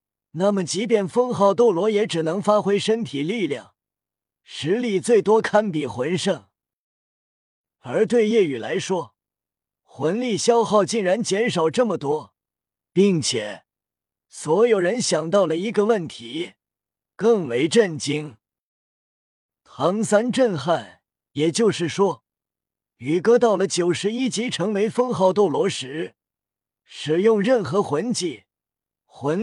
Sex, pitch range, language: male, 160-220 Hz, Chinese